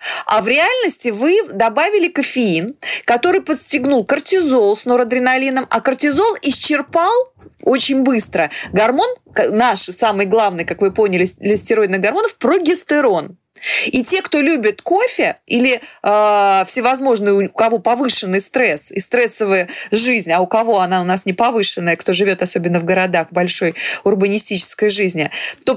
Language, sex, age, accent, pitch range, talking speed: Russian, female, 30-49, native, 205-310 Hz, 135 wpm